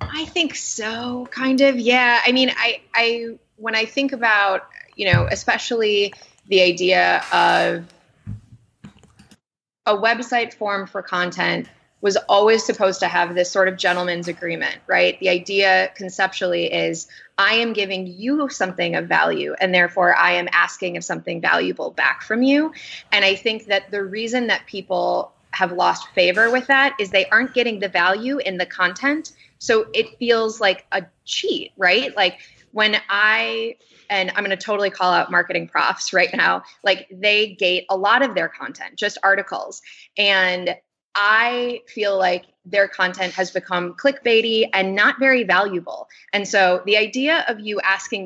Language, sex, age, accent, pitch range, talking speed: English, female, 20-39, American, 185-230 Hz, 160 wpm